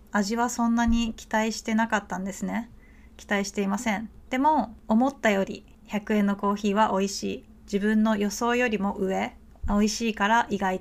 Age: 20-39